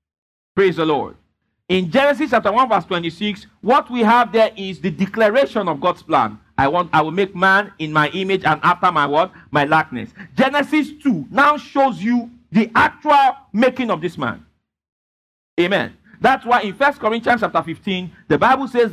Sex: male